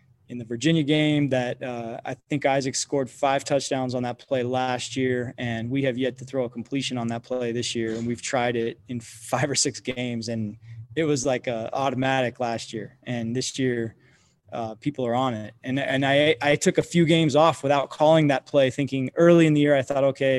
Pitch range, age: 120-140 Hz, 20-39